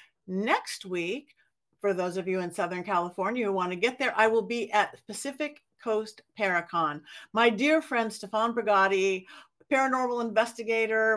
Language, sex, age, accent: English, female, 50-69, American